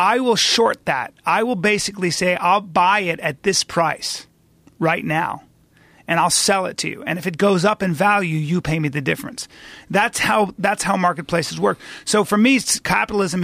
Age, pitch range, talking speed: 30-49, 155-200 Hz, 195 wpm